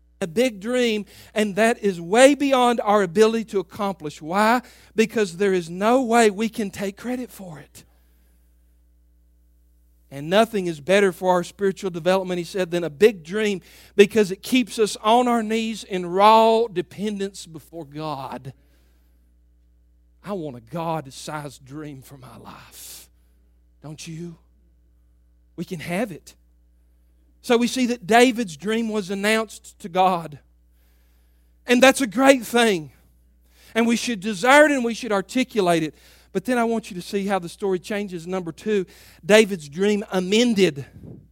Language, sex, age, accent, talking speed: English, male, 40-59, American, 155 wpm